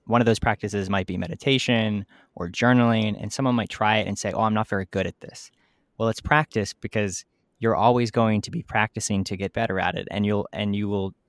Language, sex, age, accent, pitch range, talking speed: English, male, 20-39, American, 95-115 Hz, 230 wpm